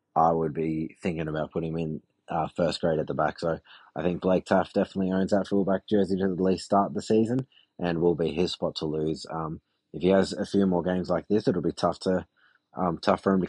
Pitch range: 85-100 Hz